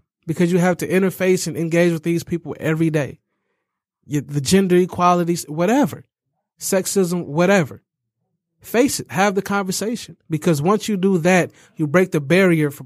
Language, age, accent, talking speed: English, 30-49, American, 160 wpm